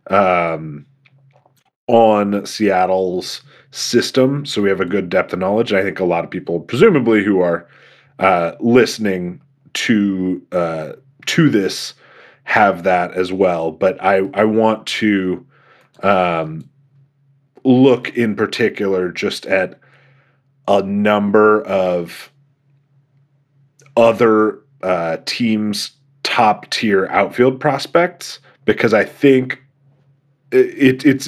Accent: American